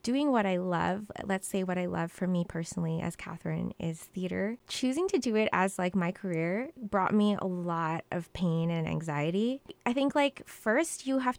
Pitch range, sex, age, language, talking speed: 185-225 Hz, female, 20-39, English, 200 wpm